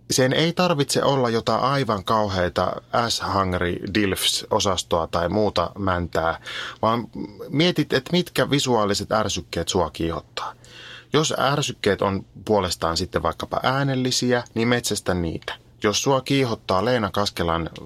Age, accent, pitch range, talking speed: 30-49, native, 95-125 Hz, 125 wpm